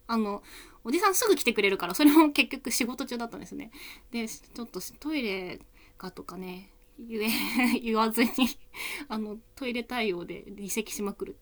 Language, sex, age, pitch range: Japanese, female, 20-39, 195-275 Hz